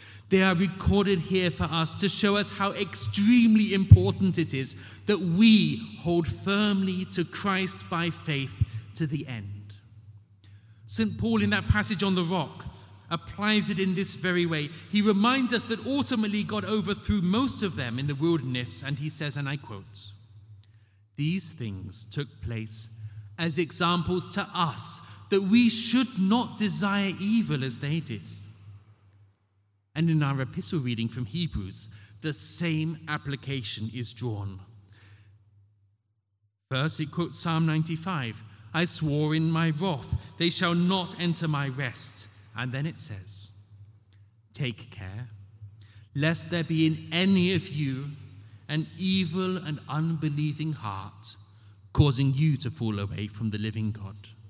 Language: English